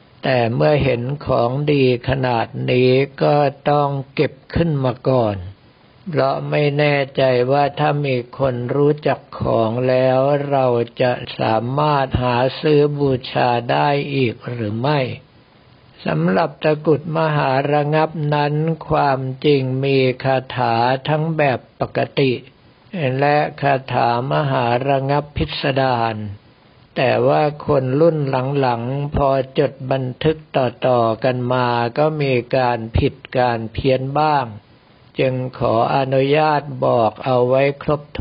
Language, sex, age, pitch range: Thai, male, 60-79, 125-145 Hz